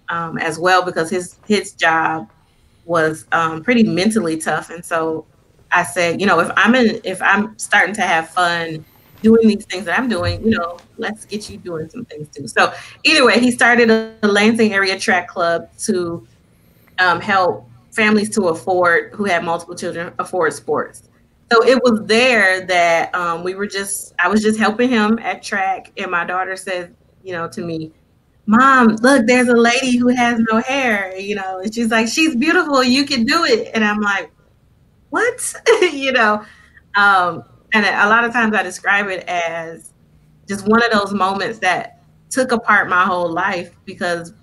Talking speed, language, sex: 185 wpm, English, female